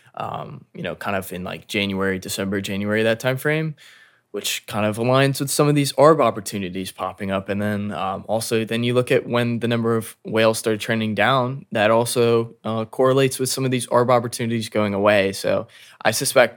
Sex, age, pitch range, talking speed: male, 20-39, 105-120 Hz, 205 wpm